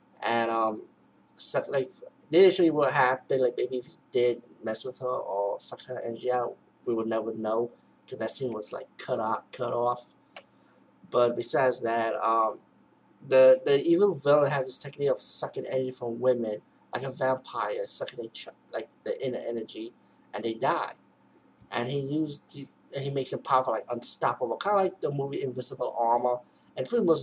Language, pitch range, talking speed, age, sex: English, 120-160 Hz, 185 wpm, 20-39, male